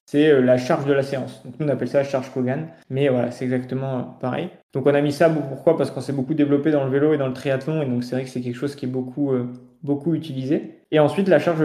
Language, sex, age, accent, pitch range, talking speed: French, male, 20-39, French, 130-150 Hz, 290 wpm